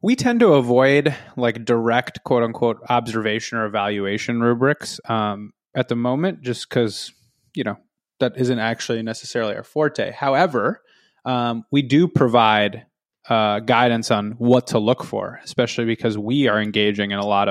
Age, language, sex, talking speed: 20-39, English, male, 160 wpm